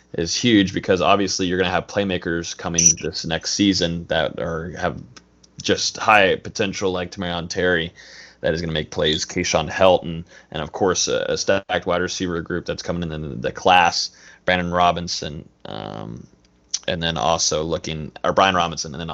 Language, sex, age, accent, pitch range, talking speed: English, male, 20-39, American, 80-95 Hz, 175 wpm